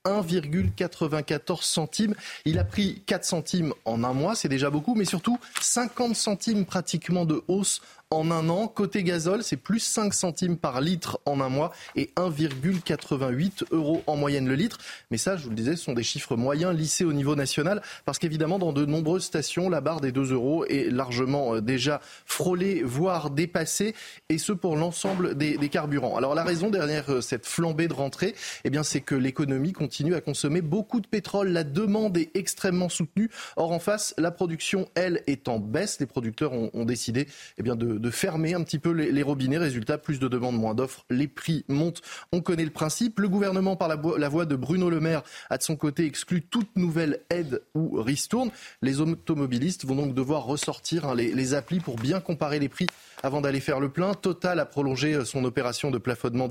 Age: 20-39